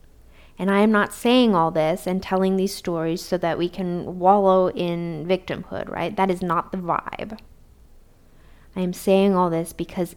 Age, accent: 20-39, American